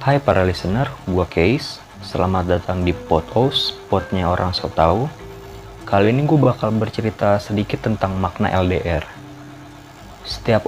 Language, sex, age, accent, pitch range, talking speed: Indonesian, male, 30-49, native, 95-115 Hz, 135 wpm